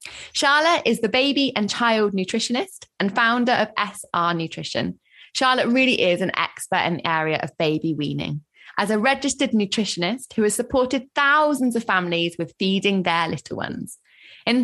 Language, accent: English, British